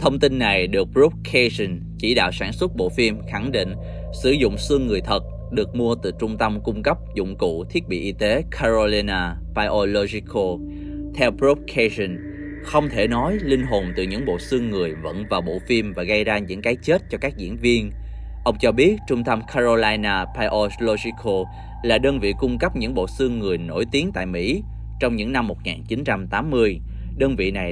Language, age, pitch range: Vietnamese, 20-39, 95-120 Hz